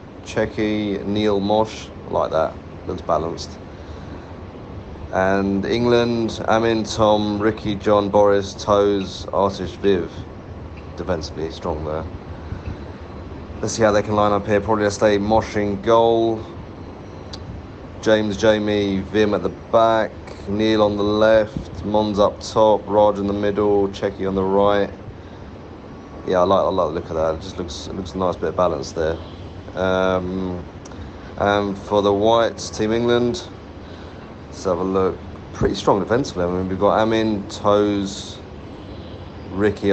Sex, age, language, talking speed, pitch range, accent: male, 30-49, English, 145 wpm, 90-105 Hz, British